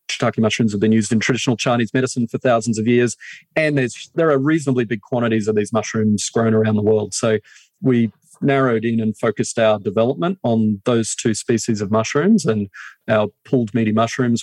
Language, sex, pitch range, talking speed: English, male, 110-125 Hz, 190 wpm